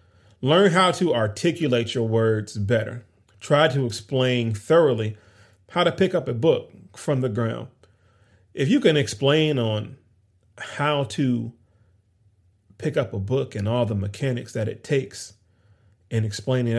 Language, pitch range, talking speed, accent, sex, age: English, 105-125 Hz, 145 wpm, American, male, 30-49